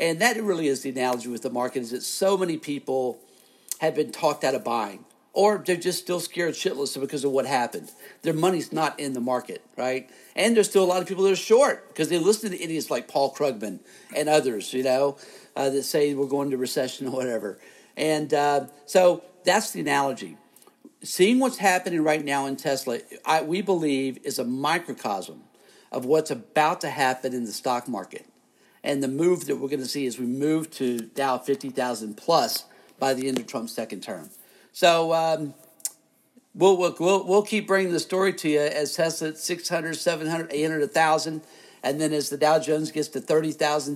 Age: 50-69